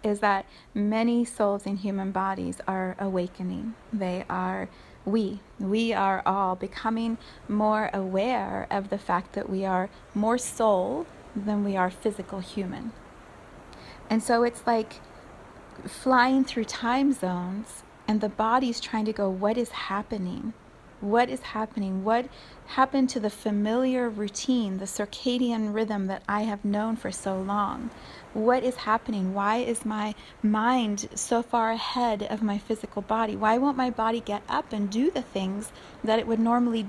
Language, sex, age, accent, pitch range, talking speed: English, female, 30-49, American, 205-240 Hz, 155 wpm